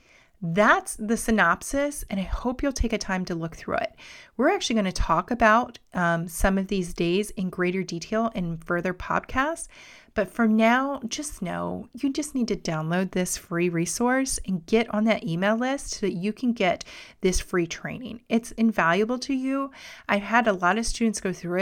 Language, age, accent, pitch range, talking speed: English, 30-49, American, 180-235 Hz, 195 wpm